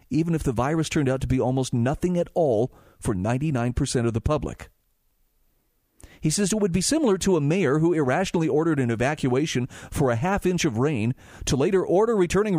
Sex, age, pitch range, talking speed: male, 40-59, 130-180 Hz, 195 wpm